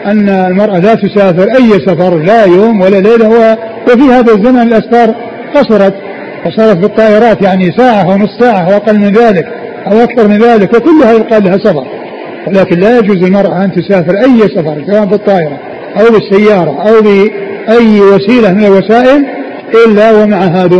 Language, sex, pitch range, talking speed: Arabic, male, 185-225 Hz, 155 wpm